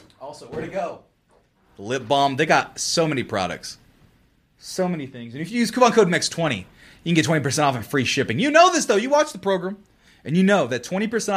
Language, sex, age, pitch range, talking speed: English, male, 30-49, 125-180 Hz, 225 wpm